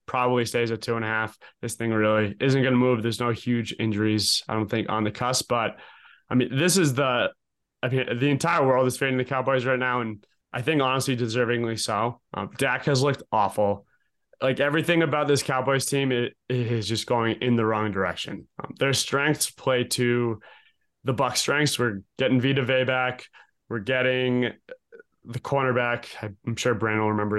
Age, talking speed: 20-39, 195 wpm